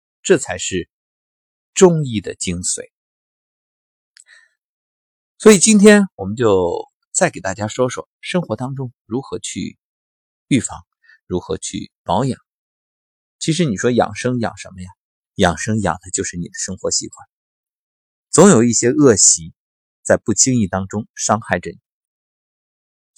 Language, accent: Chinese, native